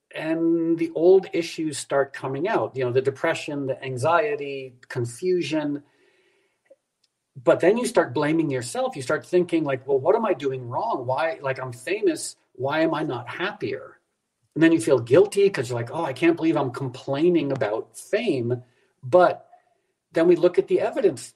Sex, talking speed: male, 175 wpm